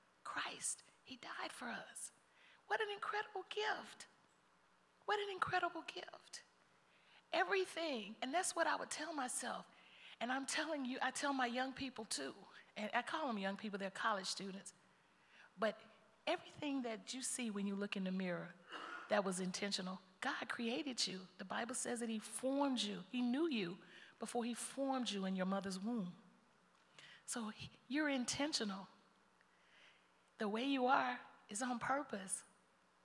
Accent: American